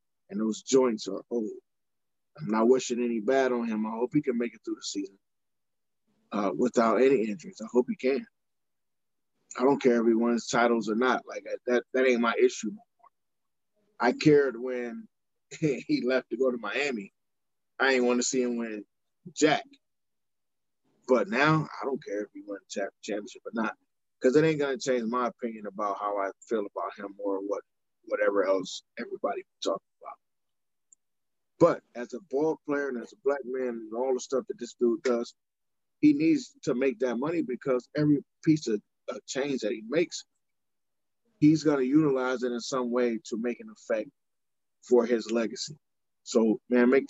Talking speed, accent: 185 wpm, American